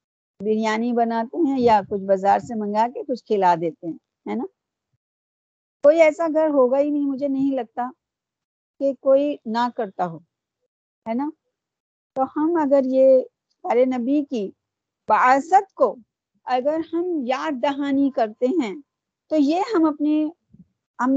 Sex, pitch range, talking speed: female, 240-320 Hz, 135 wpm